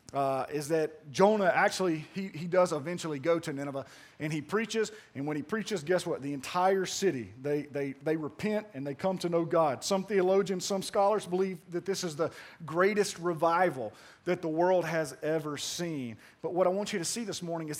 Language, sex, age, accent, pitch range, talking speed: English, male, 40-59, American, 150-195 Hz, 205 wpm